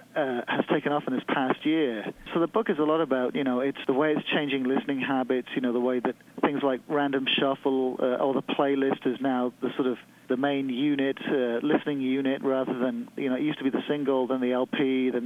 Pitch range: 125-140 Hz